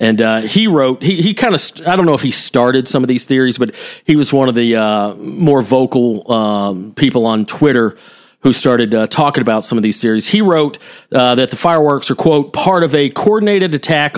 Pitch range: 120-160 Hz